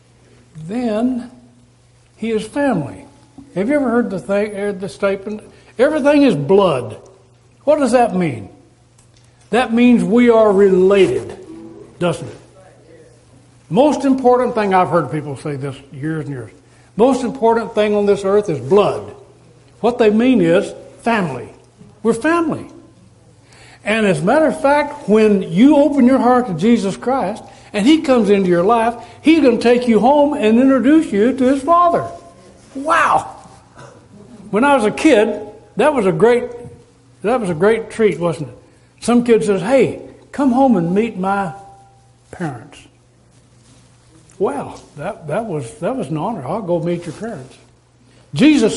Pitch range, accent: 165-250 Hz, American